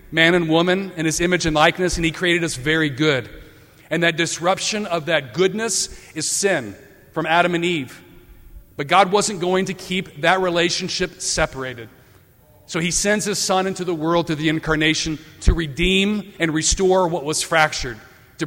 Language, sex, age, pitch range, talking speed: English, male, 40-59, 145-185 Hz, 175 wpm